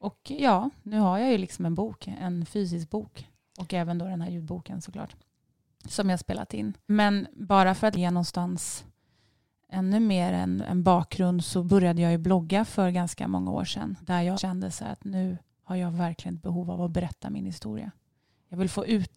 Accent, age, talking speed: native, 30-49, 200 wpm